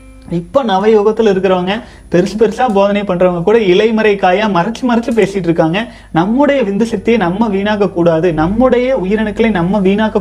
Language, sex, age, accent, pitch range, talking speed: Tamil, male, 30-49, native, 185-225 Hz, 145 wpm